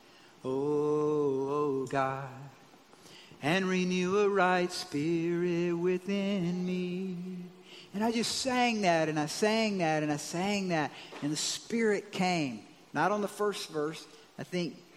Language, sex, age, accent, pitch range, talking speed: English, male, 50-69, American, 145-180 Hz, 135 wpm